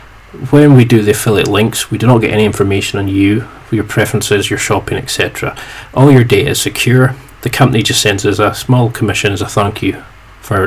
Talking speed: 210 wpm